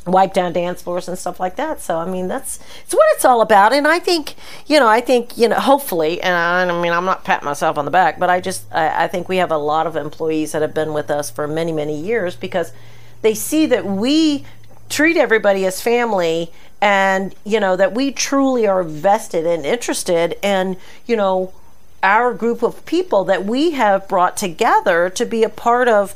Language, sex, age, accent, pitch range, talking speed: English, female, 40-59, American, 175-230 Hz, 215 wpm